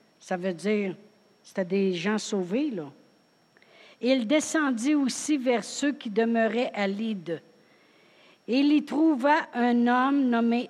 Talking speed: 135 wpm